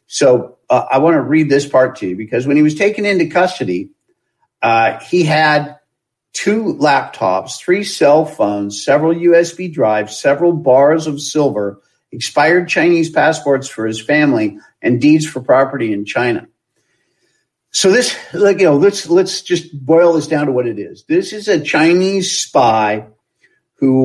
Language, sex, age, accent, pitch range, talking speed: English, male, 50-69, American, 125-170 Hz, 160 wpm